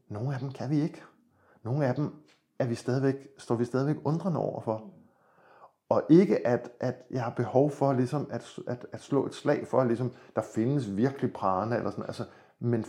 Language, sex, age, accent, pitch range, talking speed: Danish, male, 50-69, native, 115-145 Hz, 205 wpm